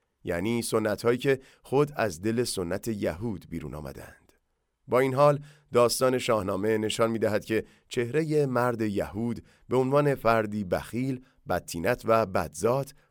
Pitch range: 100-125 Hz